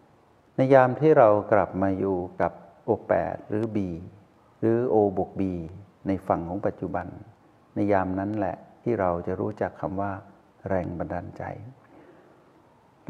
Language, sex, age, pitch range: Thai, male, 60-79, 95-115 Hz